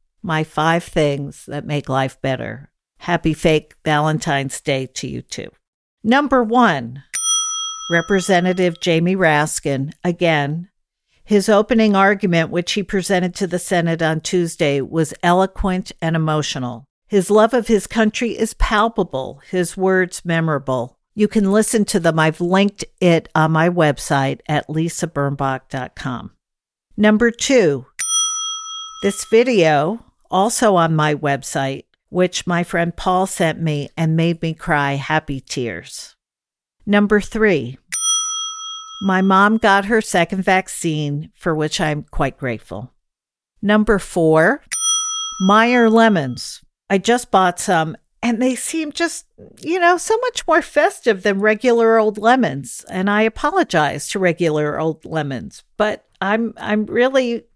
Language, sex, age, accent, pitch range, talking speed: English, female, 50-69, American, 160-220 Hz, 130 wpm